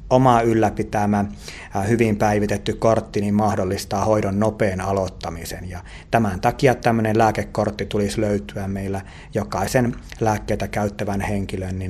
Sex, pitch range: male, 95-115 Hz